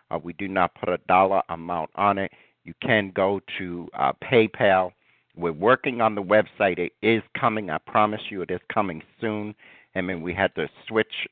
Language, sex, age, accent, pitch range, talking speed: English, male, 60-79, American, 85-100 Hz, 195 wpm